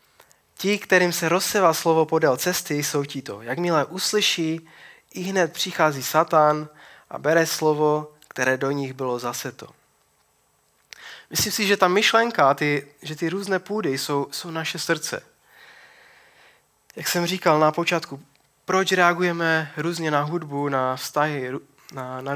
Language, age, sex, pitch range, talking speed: Czech, 20-39, male, 145-175 Hz, 135 wpm